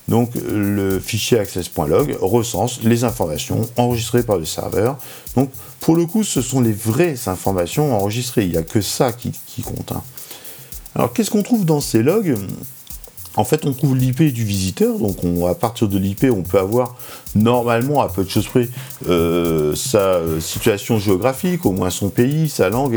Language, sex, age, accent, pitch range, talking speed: French, male, 50-69, French, 95-130 Hz, 180 wpm